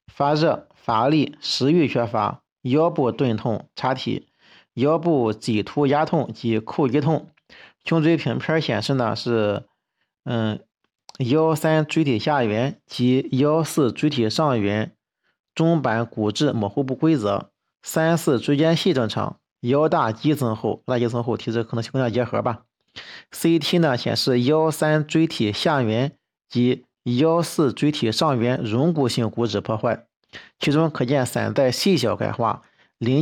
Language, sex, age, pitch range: Chinese, male, 50-69, 120-150 Hz